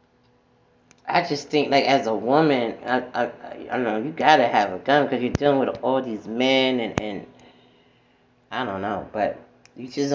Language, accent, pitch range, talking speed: English, American, 120-140 Hz, 195 wpm